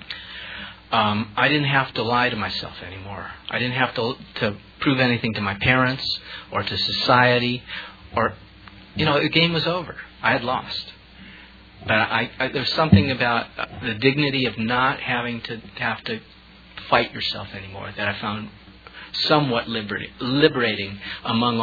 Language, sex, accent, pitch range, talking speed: English, male, American, 100-130 Hz, 160 wpm